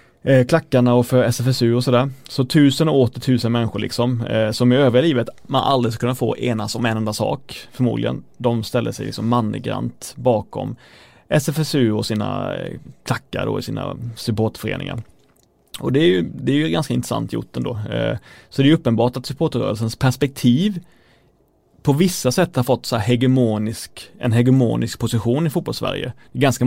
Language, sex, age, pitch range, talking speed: Swedish, male, 30-49, 115-135 Hz, 175 wpm